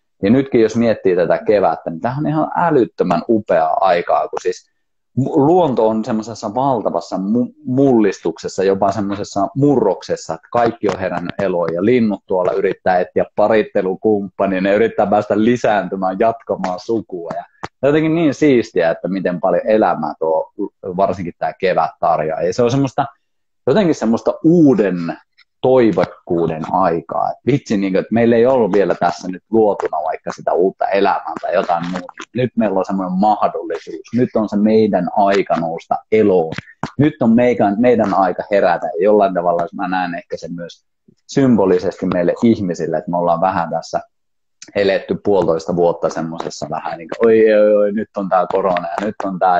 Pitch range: 90-125 Hz